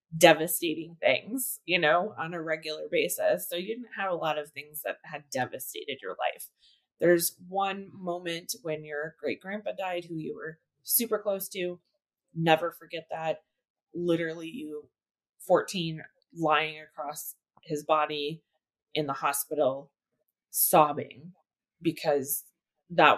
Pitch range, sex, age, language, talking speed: 150-180 Hz, female, 20-39, English, 130 wpm